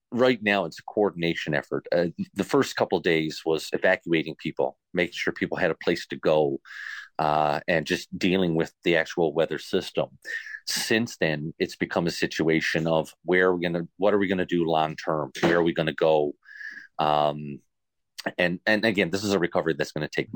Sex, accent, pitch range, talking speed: male, American, 80-100 Hz, 200 wpm